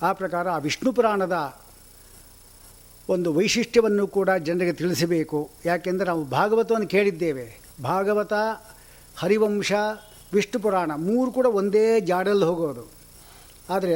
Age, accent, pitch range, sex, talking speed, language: 60-79, native, 130-195 Hz, male, 105 wpm, Kannada